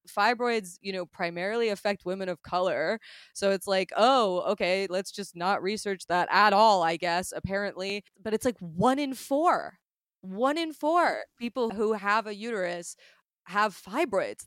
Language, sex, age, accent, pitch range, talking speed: English, female, 20-39, American, 175-205 Hz, 160 wpm